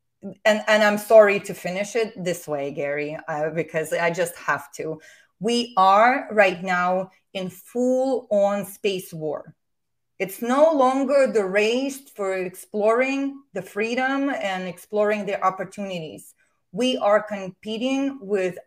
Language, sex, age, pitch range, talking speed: English, female, 30-49, 190-235 Hz, 130 wpm